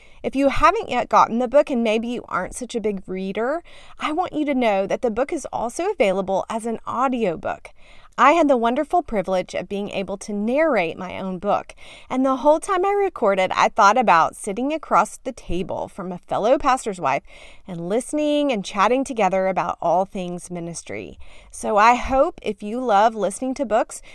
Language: English